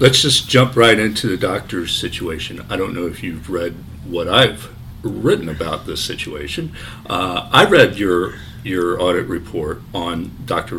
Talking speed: 160 wpm